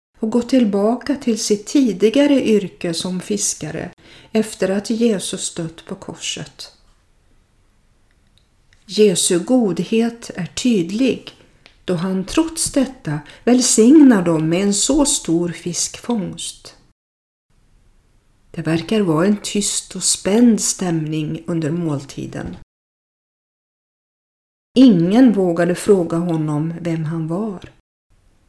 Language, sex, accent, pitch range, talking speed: Swedish, female, native, 160-230 Hz, 100 wpm